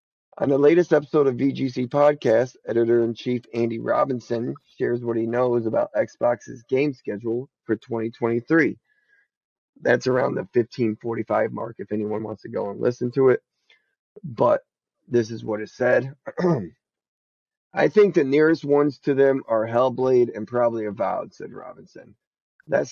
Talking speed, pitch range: 150 wpm, 110-145 Hz